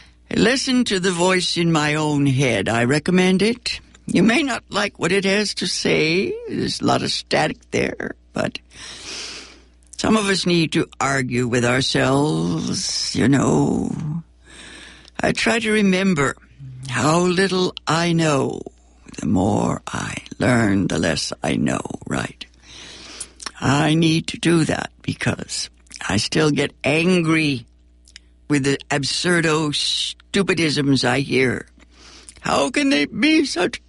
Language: English